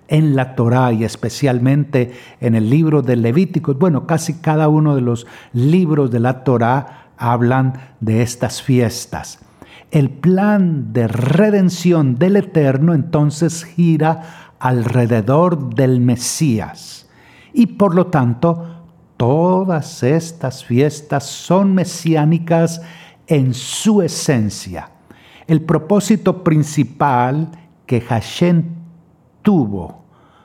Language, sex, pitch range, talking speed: Spanish, male, 125-170 Hz, 105 wpm